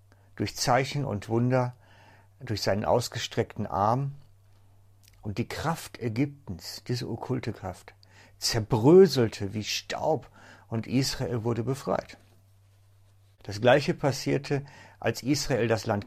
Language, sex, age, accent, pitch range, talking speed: German, male, 60-79, German, 100-130 Hz, 110 wpm